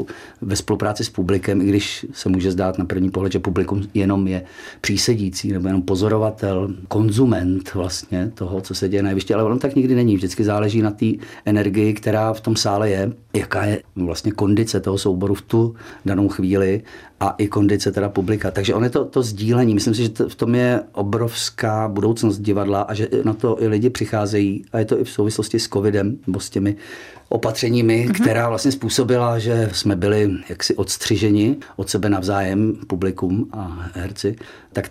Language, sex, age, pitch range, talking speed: Czech, male, 40-59, 95-115 Hz, 180 wpm